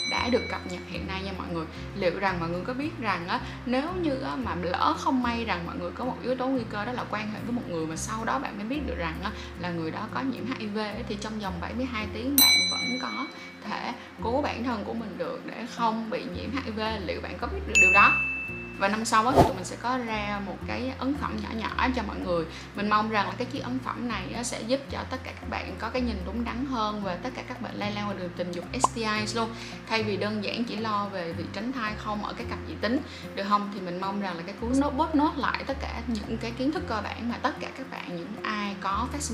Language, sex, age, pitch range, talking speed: Vietnamese, female, 20-39, 180-250 Hz, 275 wpm